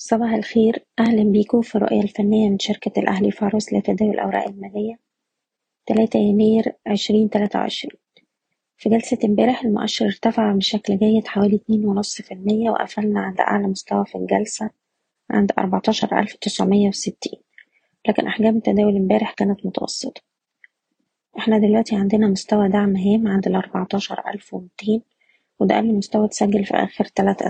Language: Arabic